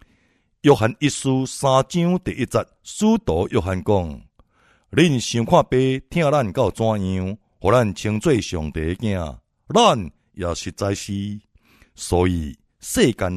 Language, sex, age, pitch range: Chinese, male, 60-79, 85-120 Hz